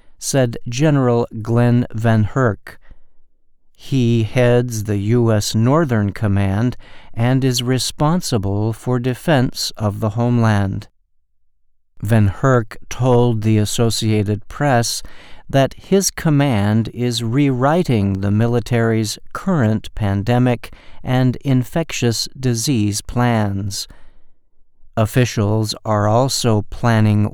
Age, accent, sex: 50-69, American, male